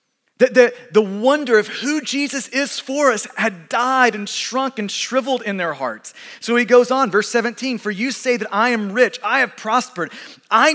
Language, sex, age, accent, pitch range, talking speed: English, male, 30-49, American, 220-270 Hz, 195 wpm